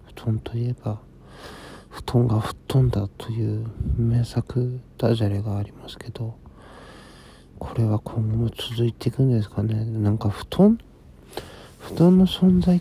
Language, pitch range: Japanese, 105-125 Hz